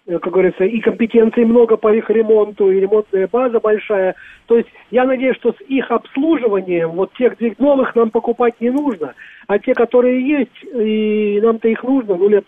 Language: Russian